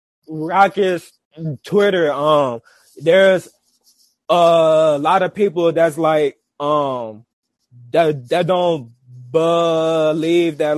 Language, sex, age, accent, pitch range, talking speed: English, male, 20-39, American, 145-190 Hz, 90 wpm